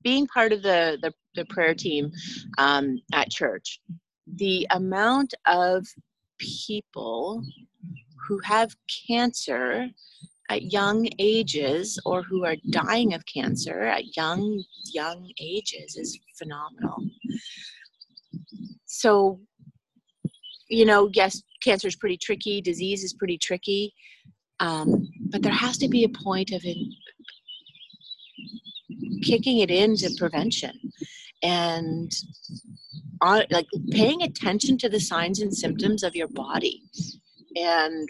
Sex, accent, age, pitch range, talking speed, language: female, American, 30-49, 170-225 Hz, 110 wpm, English